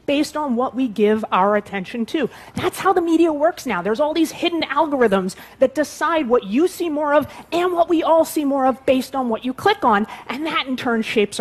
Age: 30-49